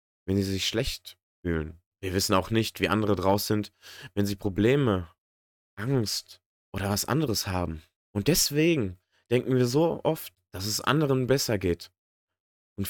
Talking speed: 155 wpm